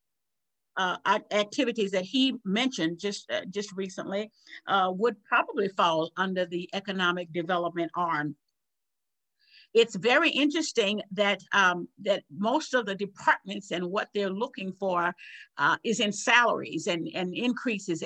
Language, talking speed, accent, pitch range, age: English, 135 wpm, American, 185-220 Hz, 50-69